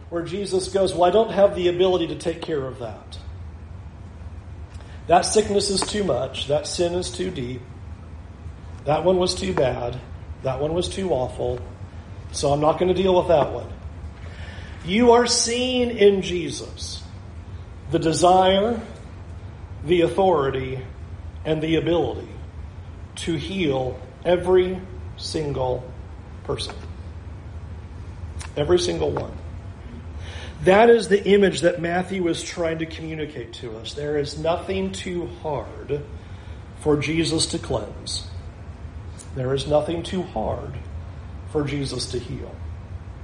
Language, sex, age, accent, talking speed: English, male, 40-59, American, 130 wpm